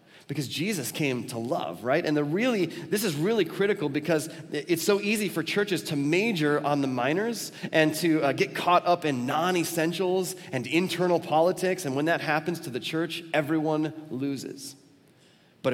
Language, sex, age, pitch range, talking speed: English, male, 30-49, 135-170 Hz, 170 wpm